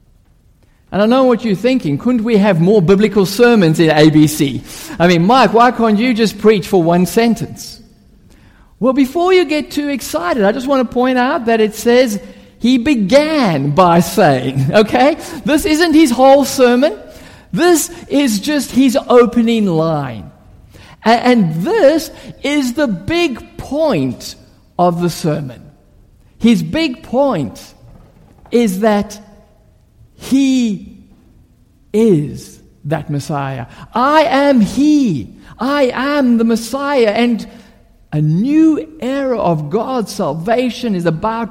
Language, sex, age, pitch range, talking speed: English, male, 50-69, 165-255 Hz, 130 wpm